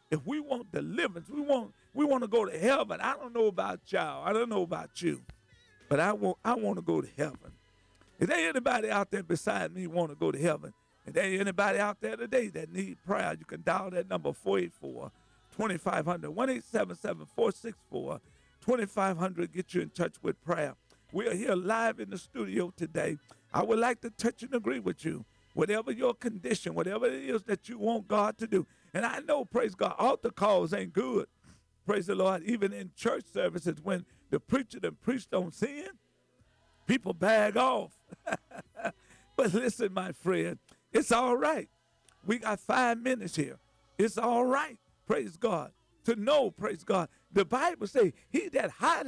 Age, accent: 50-69, American